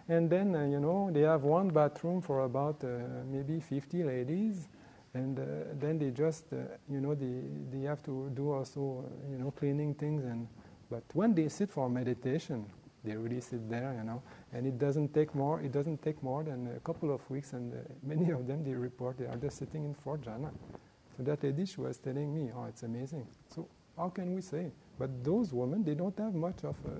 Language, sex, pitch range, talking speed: English, male, 125-155 Hz, 220 wpm